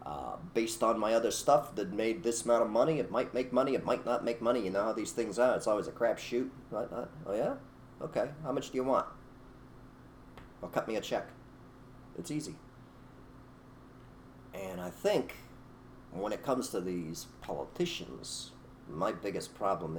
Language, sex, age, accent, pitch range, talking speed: English, male, 40-59, American, 95-130 Hz, 180 wpm